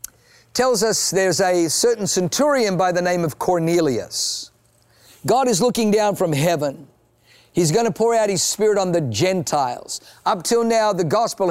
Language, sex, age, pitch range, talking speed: English, male, 50-69, 145-185 Hz, 165 wpm